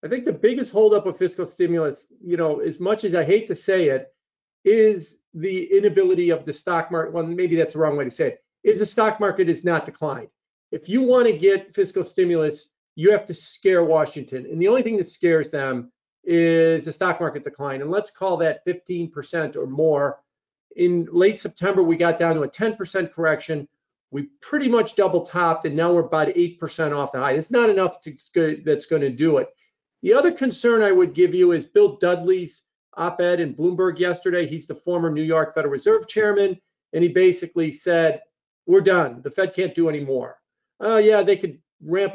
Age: 50-69